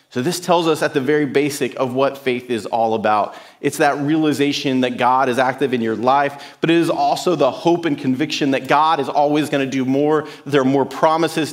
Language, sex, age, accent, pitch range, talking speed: English, male, 40-59, American, 135-165 Hz, 230 wpm